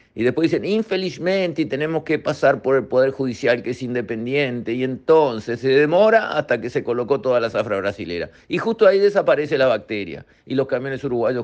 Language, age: Spanish, 50-69